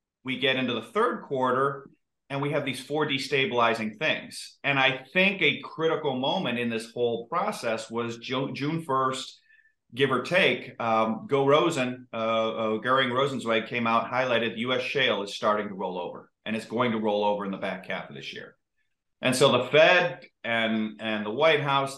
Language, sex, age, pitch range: English, male, 40-59, 110-135 Hz